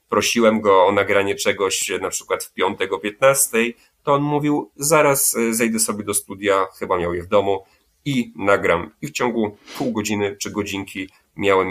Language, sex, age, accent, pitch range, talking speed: Polish, male, 30-49, native, 100-120 Hz, 175 wpm